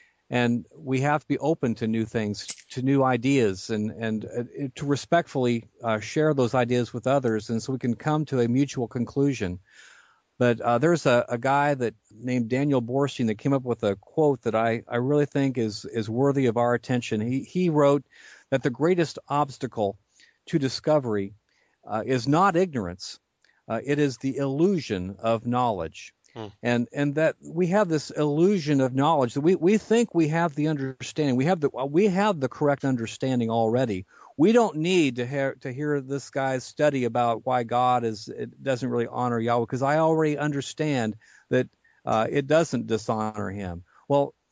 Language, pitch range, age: English, 120-145 Hz, 50-69